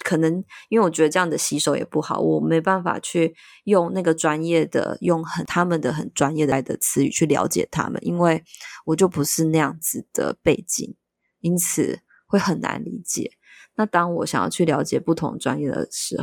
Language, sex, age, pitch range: Chinese, female, 20-39, 155-185 Hz